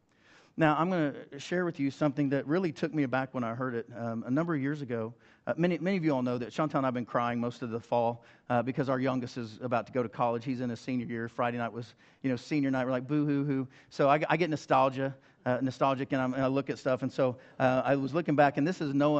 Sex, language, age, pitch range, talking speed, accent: male, English, 40-59, 125-150 Hz, 285 wpm, American